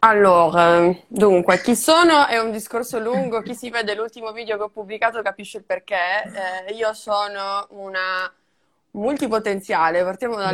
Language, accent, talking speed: Italian, native, 150 wpm